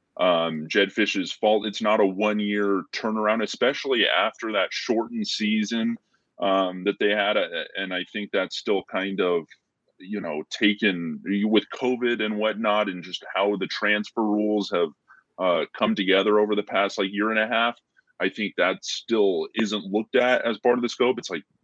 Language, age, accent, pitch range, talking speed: English, 20-39, American, 95-110 Hz, 185 wpm